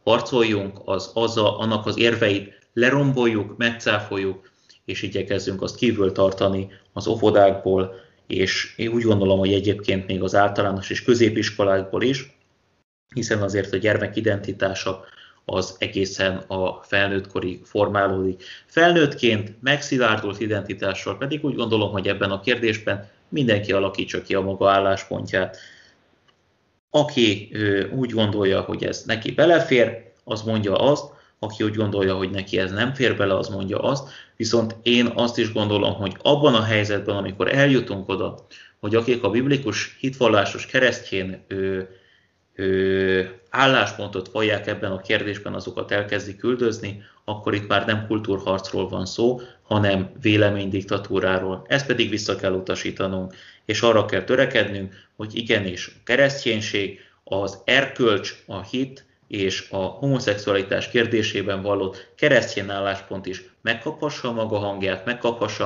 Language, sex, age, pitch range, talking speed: Hungarian, male, 30-49, 95-115 Hz, 130 wpm